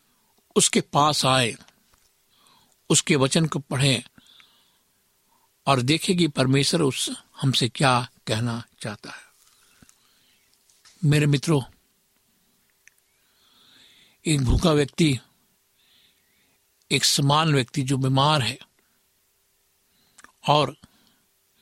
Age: 60-79